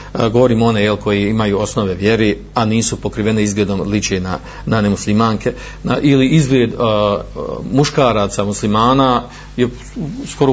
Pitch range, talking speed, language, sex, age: 105-130 Hz, 130 wpm, Croatian, male, 50-69